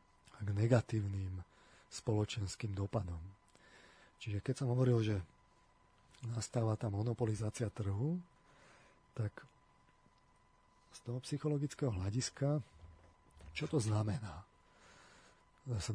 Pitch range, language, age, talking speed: 105-125 Hz, Slovak, 40-59, 85 wpm